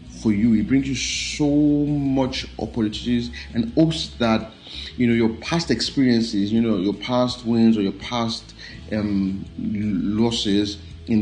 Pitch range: 90-115 Hz